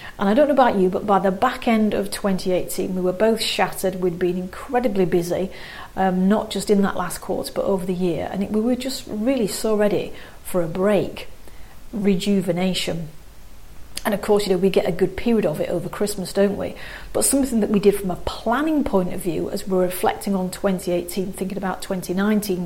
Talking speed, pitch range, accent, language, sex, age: 205 wpm, 185-210 Hz, British, English, female, 40-59